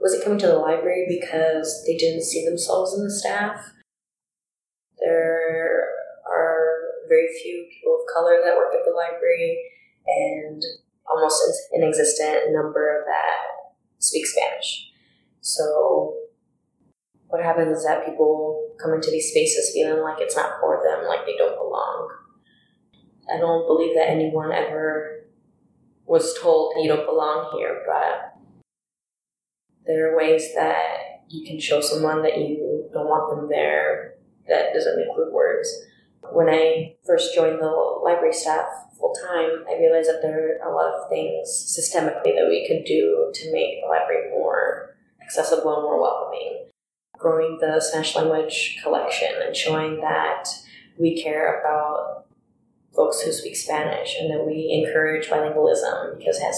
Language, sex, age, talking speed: English, female, 20-39, 150 wpm